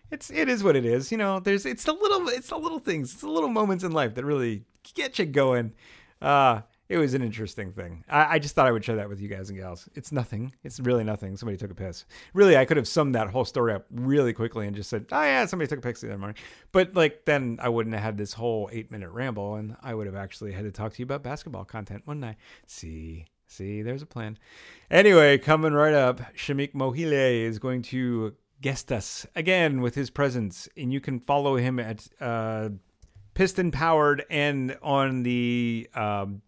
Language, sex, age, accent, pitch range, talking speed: English, male, 30-49, American, 110-145 Hz, 230 wpm